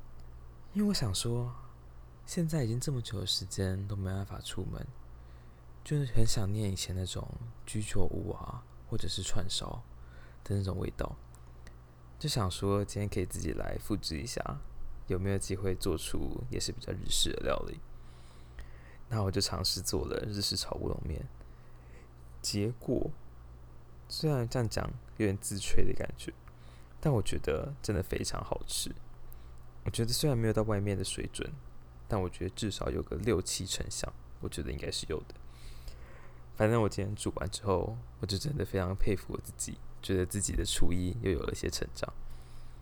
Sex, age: male, 20-39